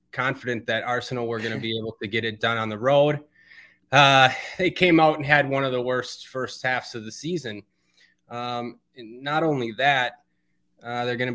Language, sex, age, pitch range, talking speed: English, male, 20-39, 115-130 Hz, 205 wpm